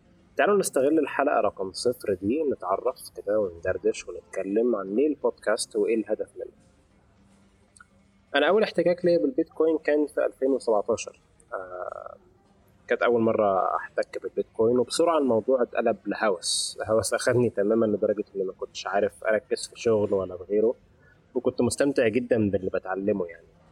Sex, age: male, 20-39